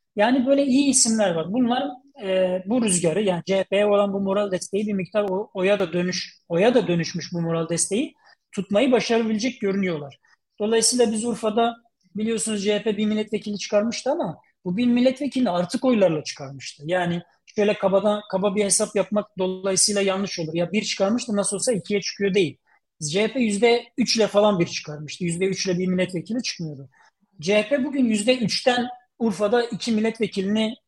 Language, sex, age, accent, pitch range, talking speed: Turkish, male, 40-59, native, 180-225 Hz, 155 wpm